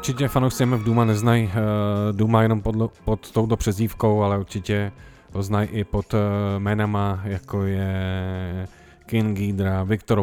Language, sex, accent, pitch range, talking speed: Czech, male, native, 95-105 Hz, 140 wpm